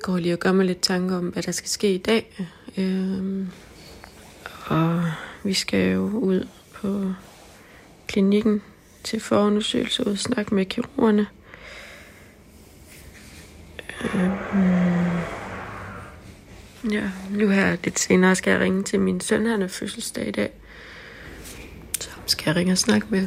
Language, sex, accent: Danish, female, native